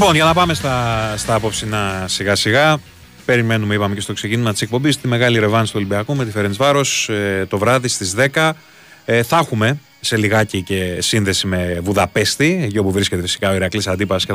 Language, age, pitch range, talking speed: Greek, 30-49, 100-125 Hz, 185 wpm